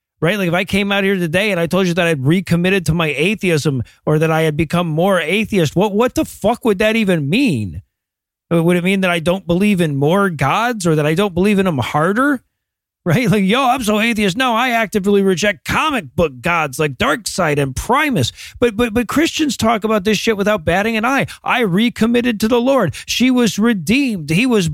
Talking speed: 220 wpm